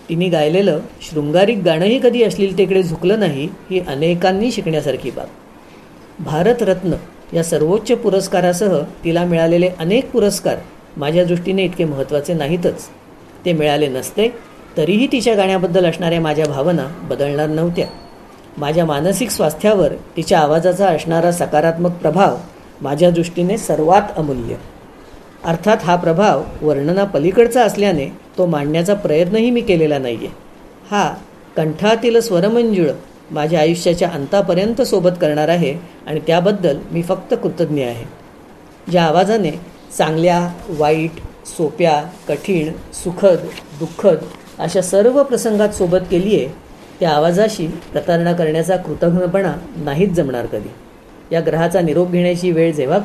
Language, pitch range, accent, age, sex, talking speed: Marathi, 160-195 Hz, native, 40-59, female, 120 wpm